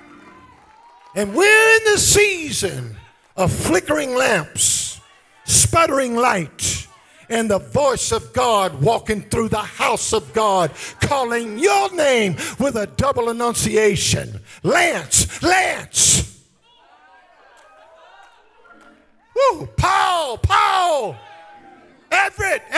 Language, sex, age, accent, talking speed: English, male, 50-69, American, 90 wpm